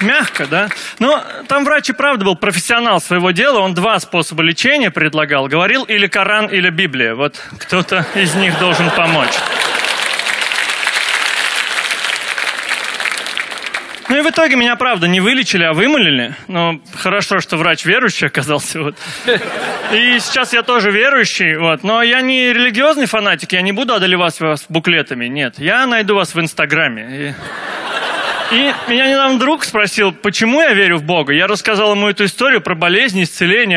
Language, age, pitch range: Russian, 30-49, 170-230 Hz